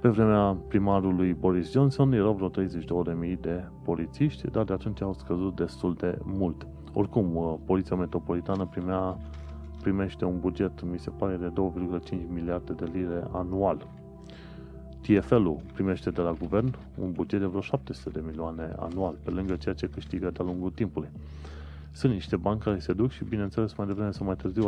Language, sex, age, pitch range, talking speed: Romanian, male, 30-49, 75-95 Hz, 165 wpm